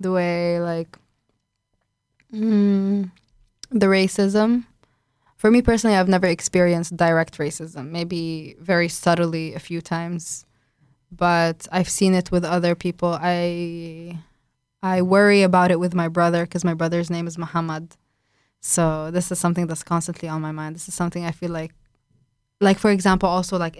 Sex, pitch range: female, 165-185 Hz